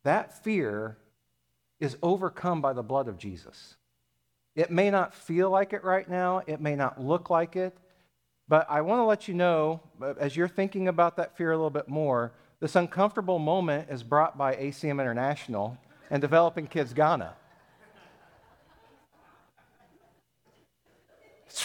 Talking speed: 145 wpm